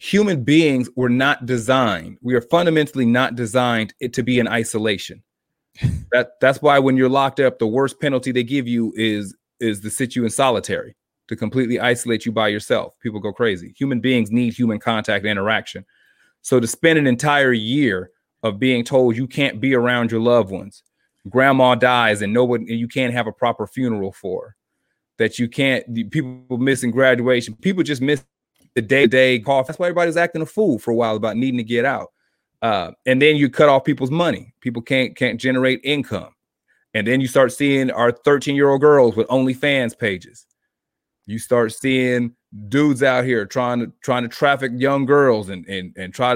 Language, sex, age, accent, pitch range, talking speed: English, male, 30-49, American, 115-135 Hz, 190 wpm